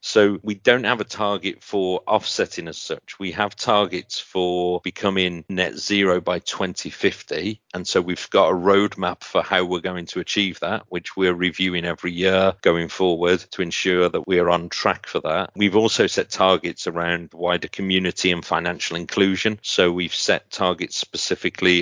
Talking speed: 175 wpm